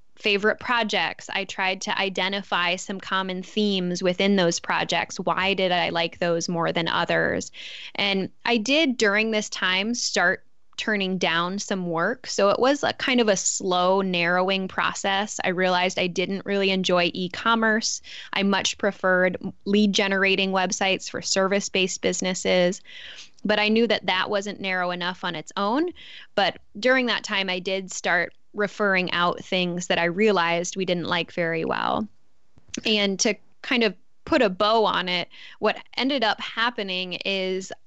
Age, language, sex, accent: 10-29, English, female, American